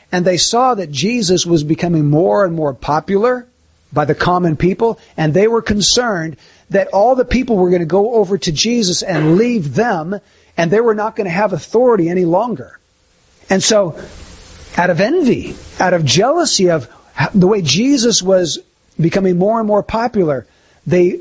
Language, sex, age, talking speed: English, male, 50-69, 175 wpm